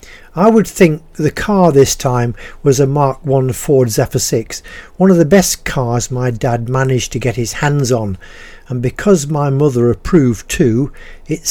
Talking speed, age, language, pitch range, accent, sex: 175 wpm, 50-69, English, 120-175 Hz, British, male